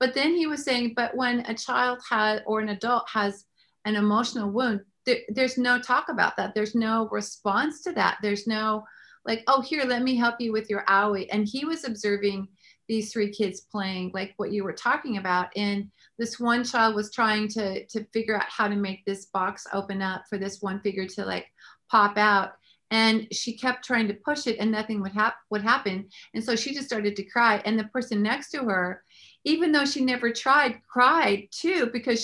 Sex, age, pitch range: female, 40-59, 210-265 Hz